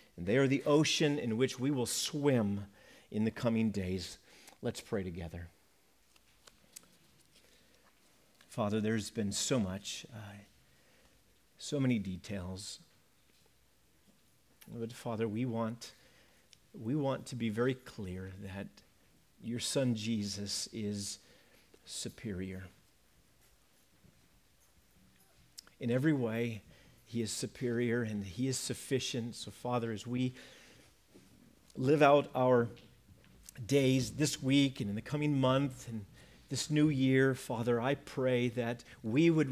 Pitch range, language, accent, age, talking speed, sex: 100-130 Hz, English, American, 50-69, 115 wpm, male